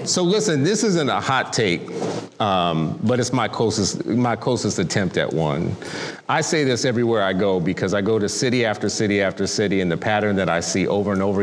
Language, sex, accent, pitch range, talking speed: English, male, American, 100-130 Hz, 215 wpm